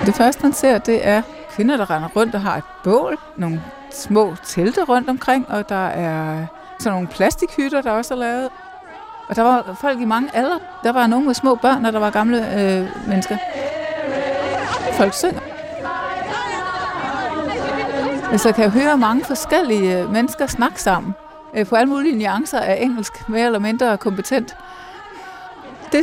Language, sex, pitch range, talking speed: Danish, female, 205-305 Hz, 165 wpm